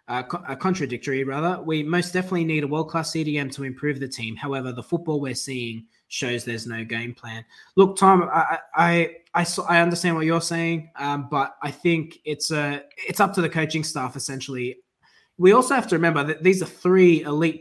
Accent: Australian